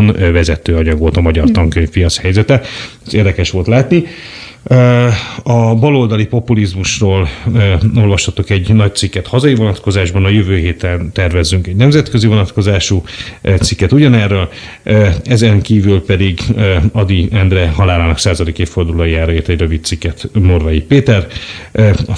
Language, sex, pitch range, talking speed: Hungarian, male, 85-110 Hz, 125 wpm